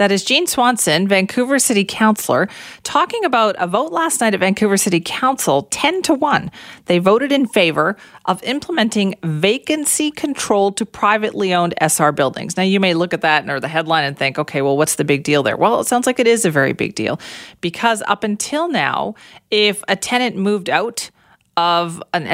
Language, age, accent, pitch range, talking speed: English, 40-59, American, 155-205 Hz, 195 wpm